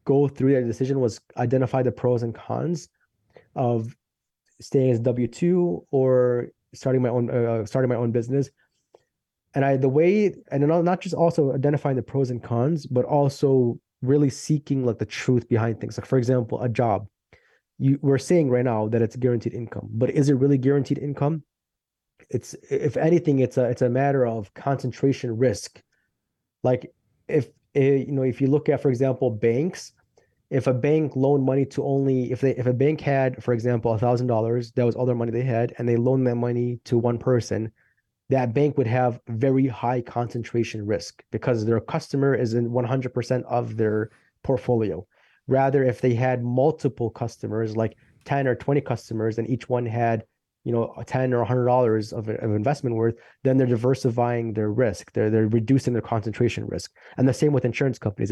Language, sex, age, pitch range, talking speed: English, male, 20-39, 115-135 Hz, 185 wpm